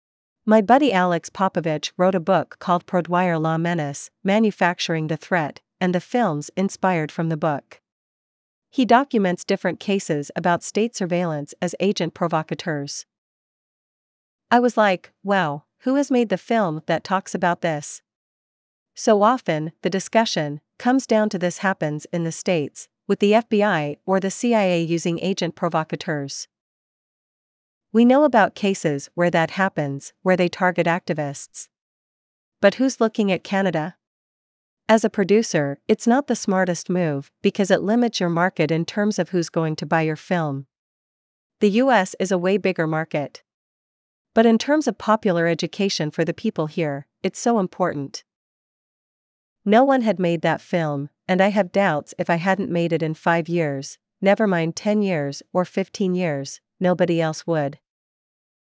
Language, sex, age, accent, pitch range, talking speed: English, female, 40-59, American, 160-205 Hz, 155 wpm